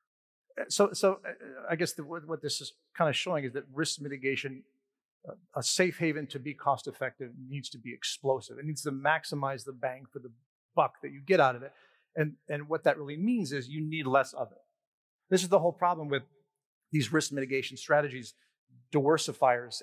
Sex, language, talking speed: male, English, 195 wpm